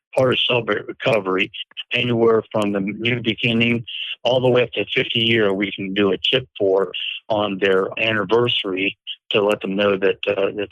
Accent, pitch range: American, 105-125 Hz